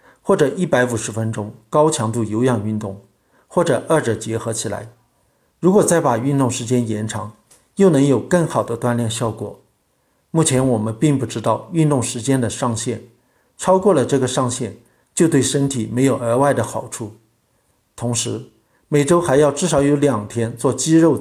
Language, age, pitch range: Chinese, 50-69, 115-145 Hz